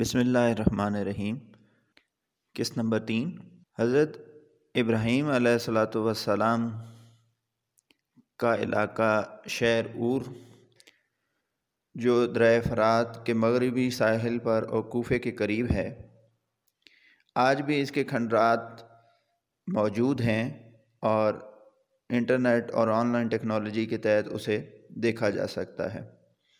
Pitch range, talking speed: 115-125 Hz, 105 wpm